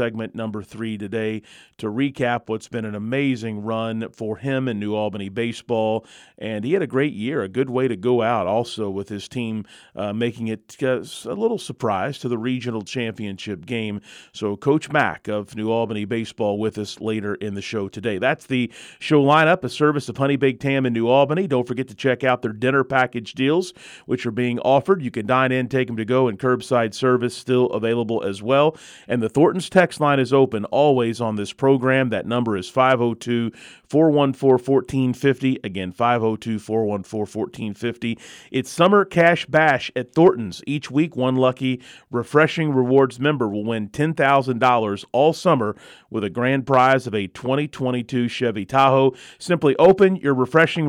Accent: American